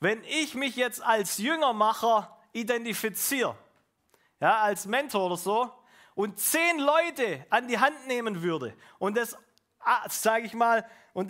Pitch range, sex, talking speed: 145-235 Hz, male, 140 wpm